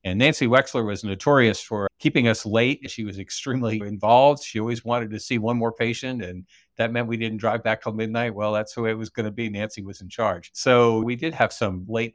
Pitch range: 100-120 Hz